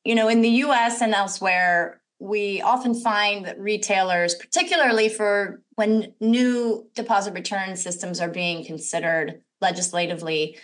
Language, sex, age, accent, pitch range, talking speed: English, female, 30-49, American, 185-235 Hz, 130 wpm